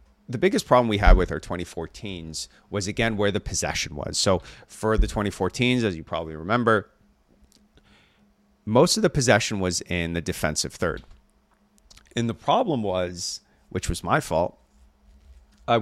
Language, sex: English, male